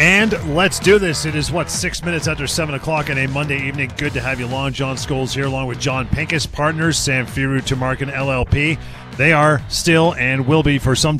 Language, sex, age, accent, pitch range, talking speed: English, male, 40-59, American, 115-140 Hz, 220 wpm